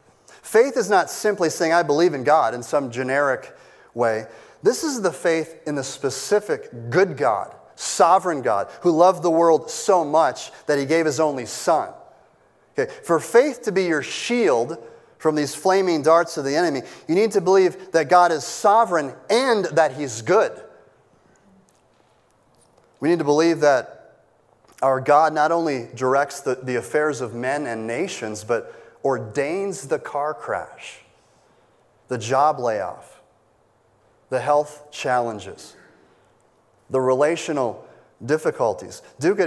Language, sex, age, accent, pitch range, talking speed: English, male, 30-49, American, 135-180 Hz, 145 wpm